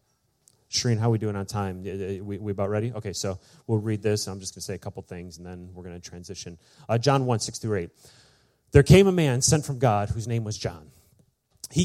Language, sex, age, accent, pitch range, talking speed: English, male, 30-49, American, 95-125 Hz, 250 wpm